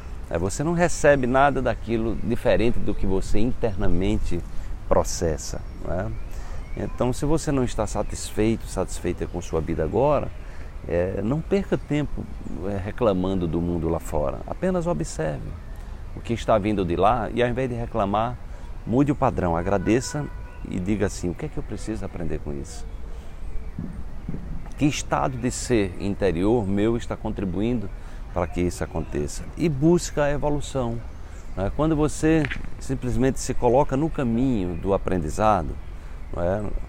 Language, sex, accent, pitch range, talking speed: Portuguese, male, Brazilian, 80-115 Hz, 145 wpm